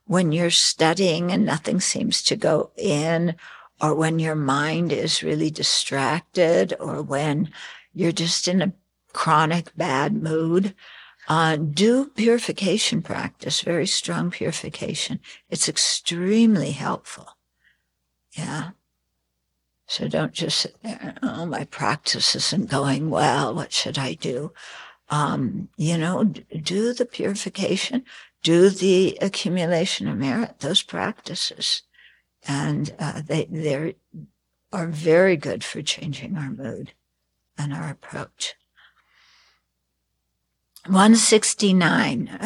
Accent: American